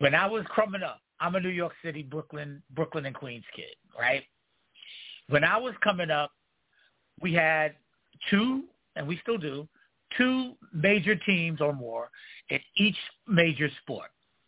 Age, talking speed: 60-79, 155 wpm